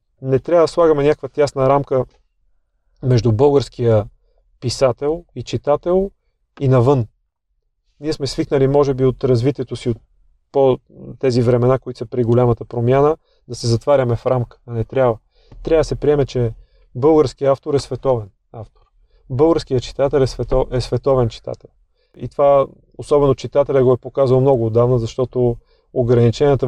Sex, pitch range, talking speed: male, 120-140 Hz, 150 wpm